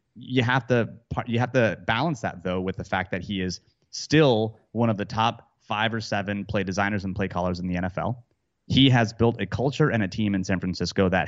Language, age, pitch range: English, 30-49, 100-125 Hz